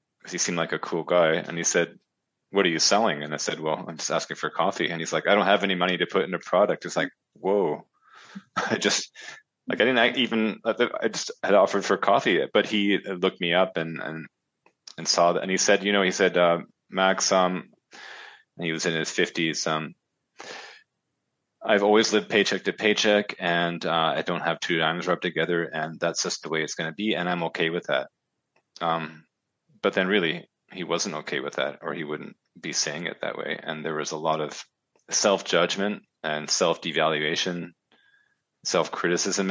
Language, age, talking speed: English, 30-49, 200 wpm